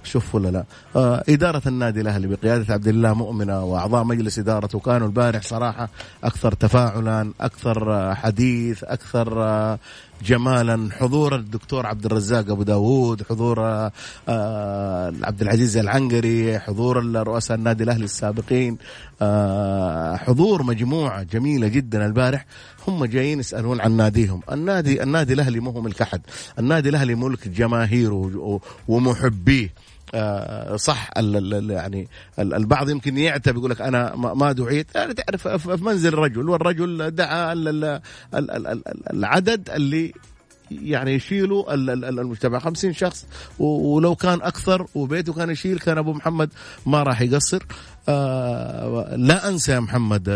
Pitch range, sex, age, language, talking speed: 105-135 Hz, male, 30-49, Arabic, 125 wpm